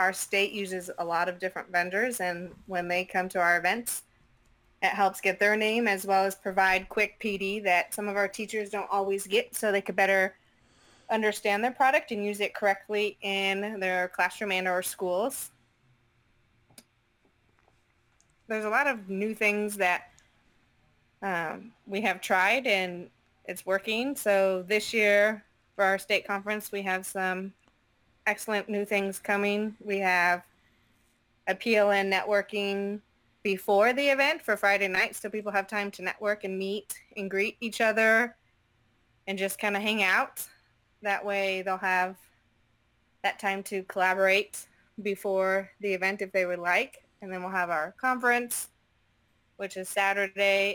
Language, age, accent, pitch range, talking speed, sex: English, 20-39, American, 185-205 Hz, 155 wpm, female